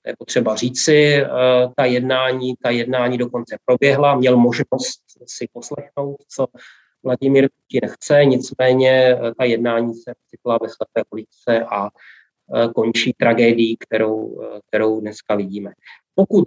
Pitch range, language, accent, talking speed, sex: 125-145 Hz, Czech, native, 115 wpm, male